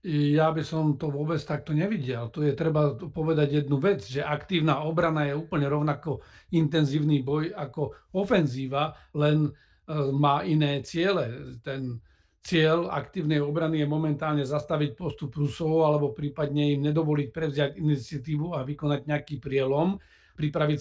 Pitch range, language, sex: 145-155 Hz, Slovak, male